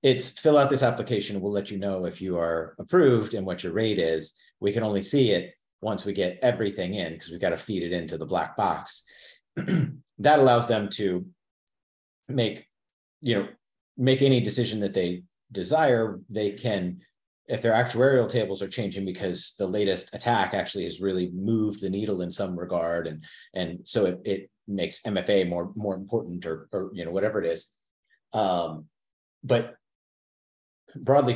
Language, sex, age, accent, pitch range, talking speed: English, male, 40-59, American, 95-120 Hz, 180 wpm